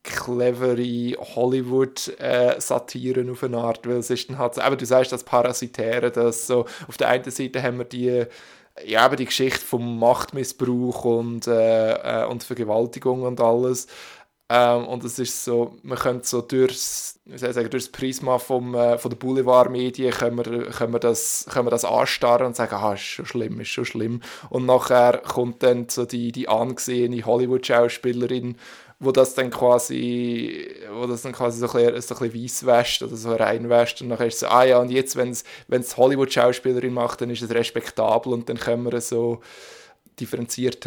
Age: 20-39